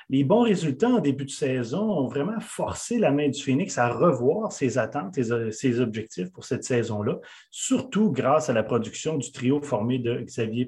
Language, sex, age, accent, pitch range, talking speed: French, male, 30-49, Canadian, 125-175 Hz, 185 wpm